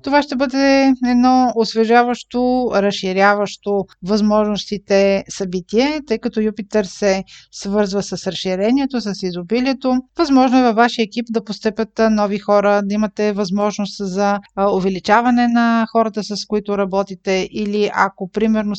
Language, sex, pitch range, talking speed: Bulgarian, female, 205-255 Hz, 125 wpm